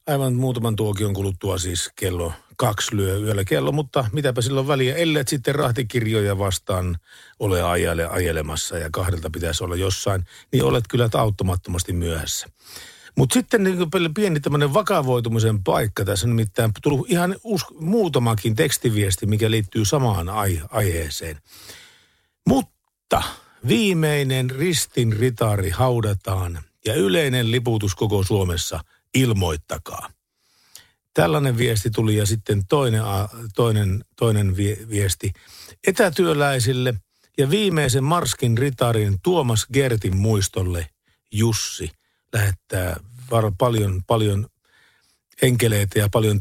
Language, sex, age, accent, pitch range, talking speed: Finnish, male, 50-69, native, 95-130 Hz, 105 wpm